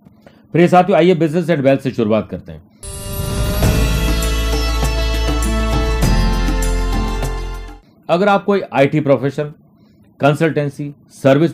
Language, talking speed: Hindi, 95 wpm